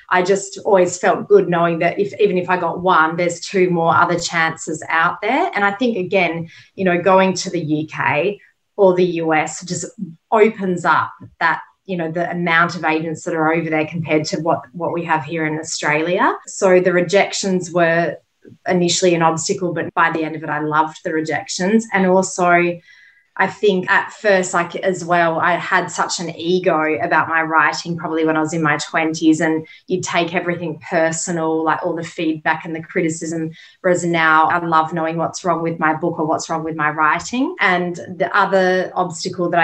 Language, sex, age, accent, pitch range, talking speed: English, female, 20-39, Australian, 160-180 Hz, 195 wpm